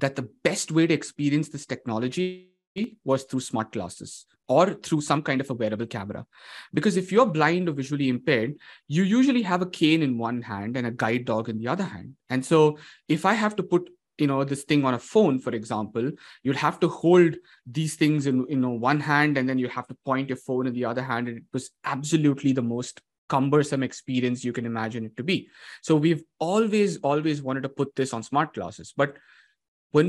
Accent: Indian